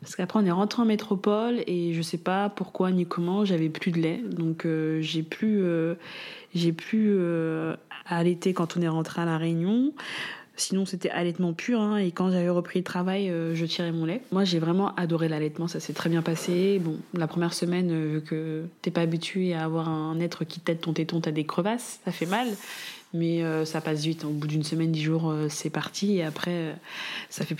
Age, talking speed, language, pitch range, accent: 20-39, 225 wpm, French, 160-185 Hz, French